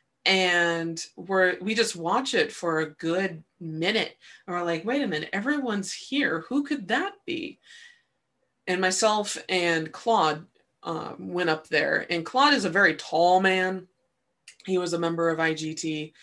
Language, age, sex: English, 20-39, female